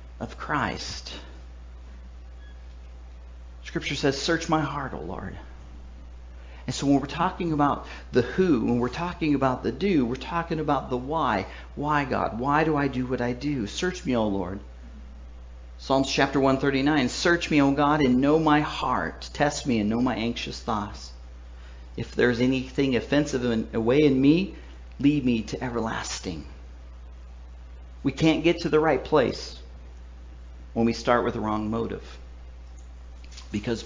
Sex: male